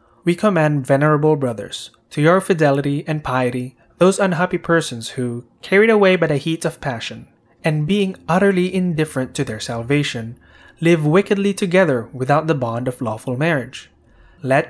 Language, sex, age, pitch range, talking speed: English, male, 20-39, 125-170 Hz, 150 wpm